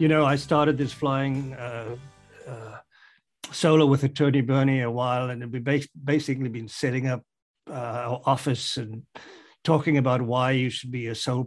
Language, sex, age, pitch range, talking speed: English, male, 60-79, 120-150 Hz, 175 wpm